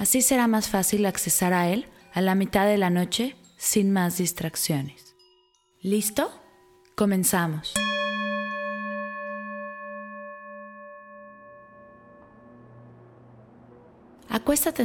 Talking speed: 75 wpm